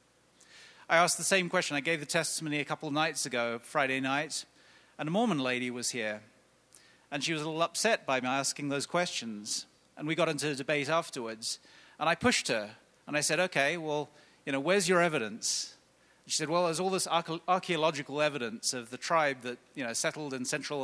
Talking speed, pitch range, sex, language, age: 205 wpm, 135-180 Hz, male, English, 40-59